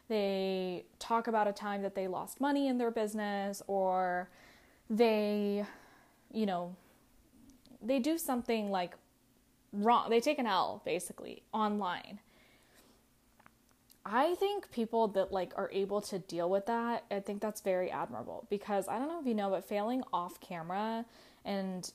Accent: American